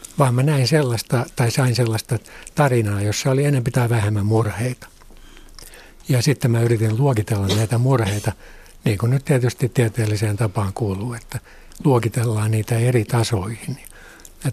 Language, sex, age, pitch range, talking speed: Finnish, male, 60-79, 105-125 Hz, 140 wpm